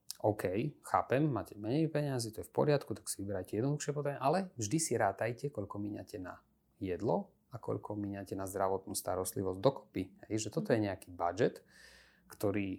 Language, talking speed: Slovak, 170 wpm